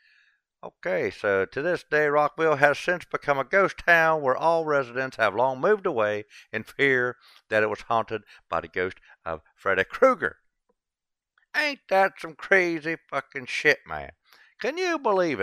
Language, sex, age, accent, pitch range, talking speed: English, male, 60-79, American, 135-210 Hz, 160 wpm